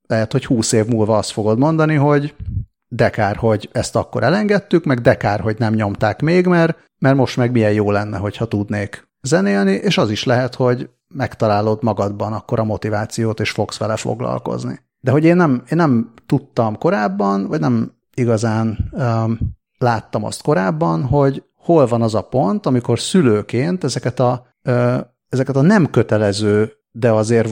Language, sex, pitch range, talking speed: Hungarian, male, 110-135 Hz, 165 wpm